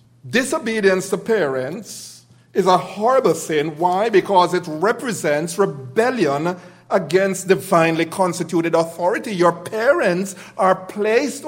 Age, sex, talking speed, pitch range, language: 50-69, male, 105 wpm, 145-190 Hz, English